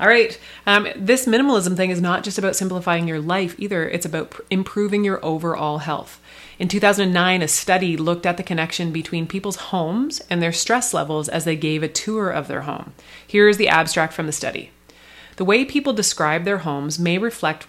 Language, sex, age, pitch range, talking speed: English, female, 30-49, 165-205 Hz, 195 wpm